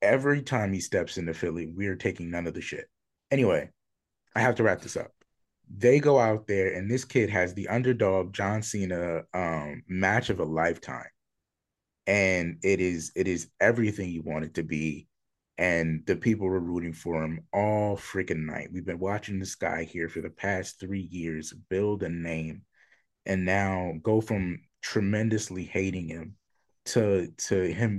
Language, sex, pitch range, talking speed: English, male, 85-100 Hz, 175 wpm